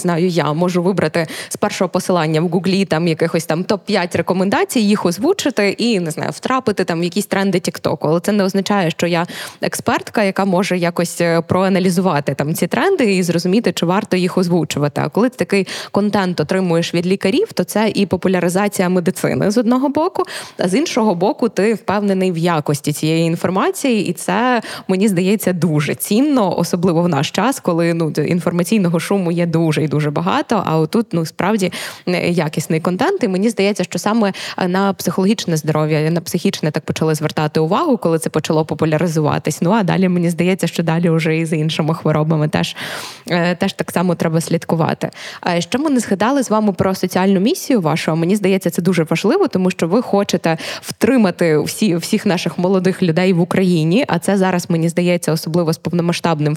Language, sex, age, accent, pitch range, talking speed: Ukrainian, female, 20-39, native, 165-200 Hz, 175 wpm